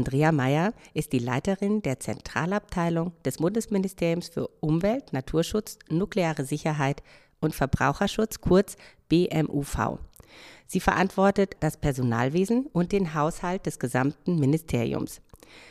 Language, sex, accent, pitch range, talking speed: German, female, German, 150-195 Hz, 105 wpm